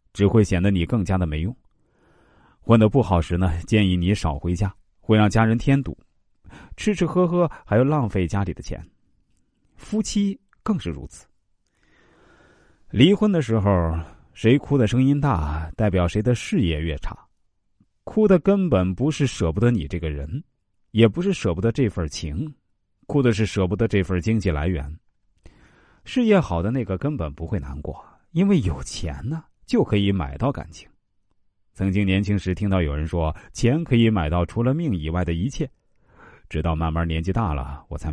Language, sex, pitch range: Chinese, male, 85-120 Hz